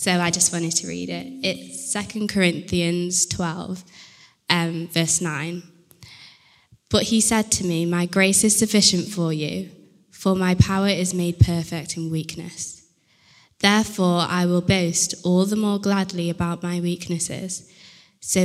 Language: English